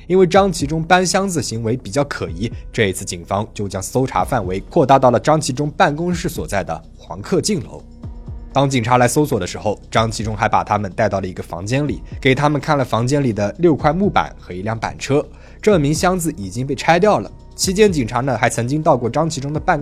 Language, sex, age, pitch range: Chinese, male, 20-39, 100-150 Hz